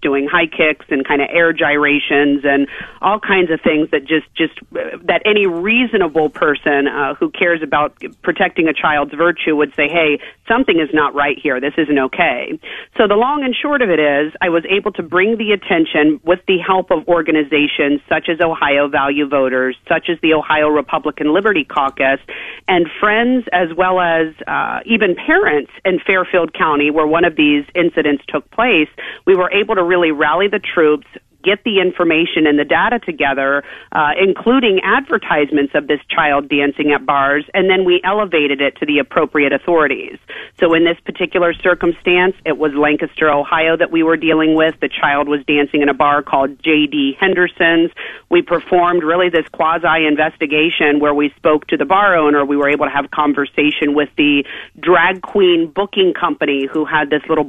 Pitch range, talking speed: 145-180 Hz, 185 wpm